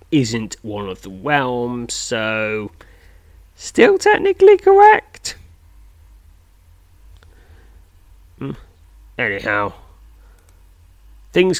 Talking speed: 60 wpm